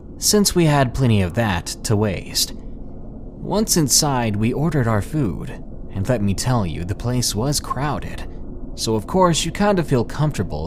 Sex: male